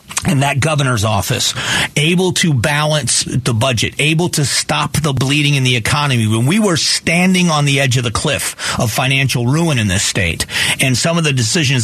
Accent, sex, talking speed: American, male, 195 wpm